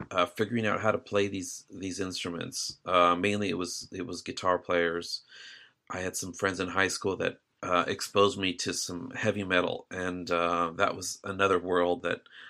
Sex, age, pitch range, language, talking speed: male, 30-49, 90-105 Hz, English, 185 wpm